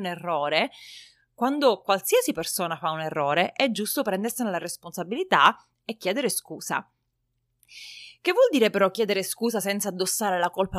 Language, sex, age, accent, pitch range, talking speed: Italian, female, 30-49, native, 180-240 Hz, 145 wpm